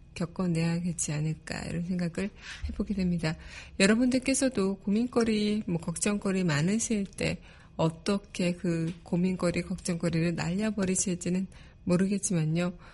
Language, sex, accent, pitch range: Korean, female, native, 175-210 Hz